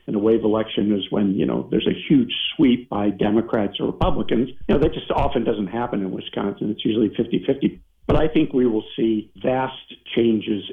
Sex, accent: male, American